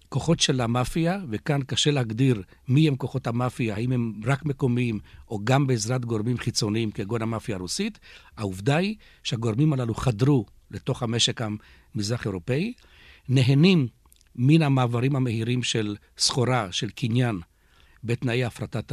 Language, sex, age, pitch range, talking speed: Hebrew, male, 60-79, 105-140 Hz, 130 wpm